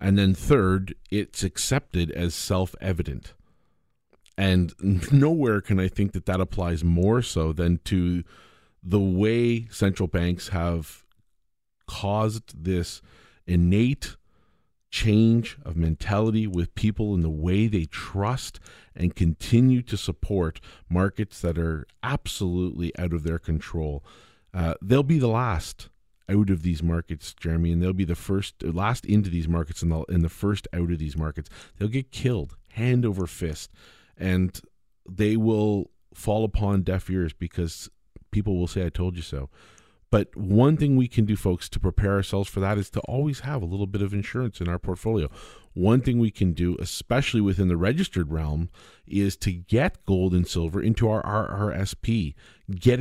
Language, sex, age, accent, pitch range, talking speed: English, male, 40-59, American, 85-110 Hz, 160 wpm